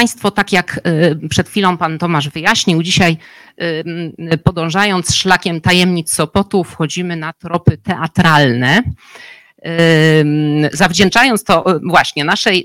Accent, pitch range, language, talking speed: native, 160-205 Hz, Polish, 100 wpm